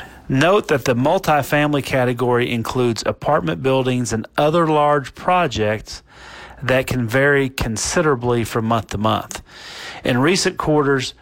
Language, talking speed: English, 125 wpm